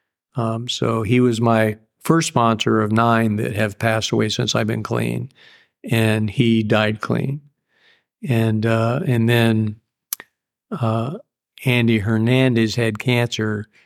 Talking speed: 130 wpm